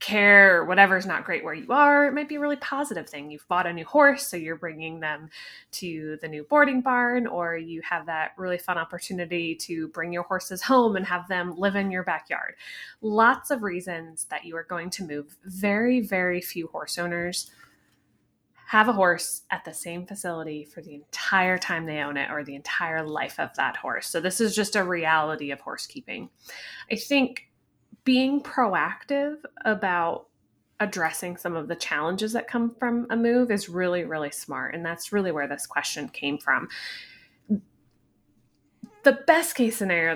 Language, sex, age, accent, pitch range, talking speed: English, female, 20-39, American, 165-230 Hz, 185 wpm